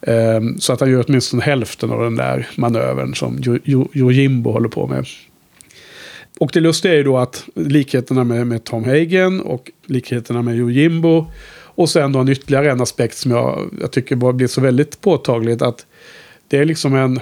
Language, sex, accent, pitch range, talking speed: Swedish, male, Norwegian, 120-155 Hz, 190 wpm